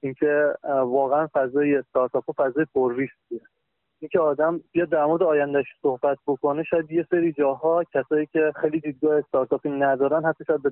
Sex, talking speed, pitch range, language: male, 140 wpm, 135-165 Hz, Persian